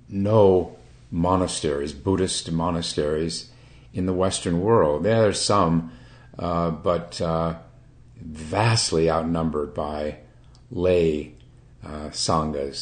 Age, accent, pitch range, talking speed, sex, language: 50-69, American, 85-120 Hz, 95 wpm, male, English